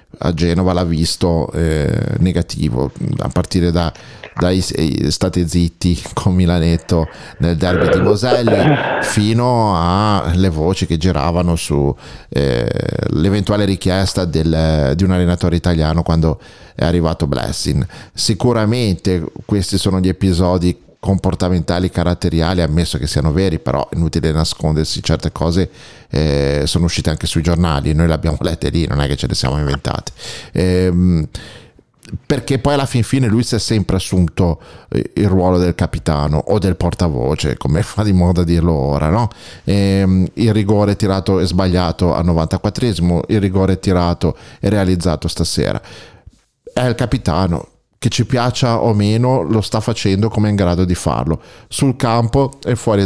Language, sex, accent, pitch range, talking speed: Italian, male, native, 85-105 Hz, 145 wpm